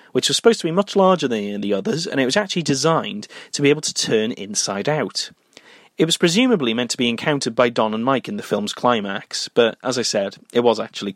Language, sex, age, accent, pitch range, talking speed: English, male, 30-49, British, 120-200 Hz, 235 wpm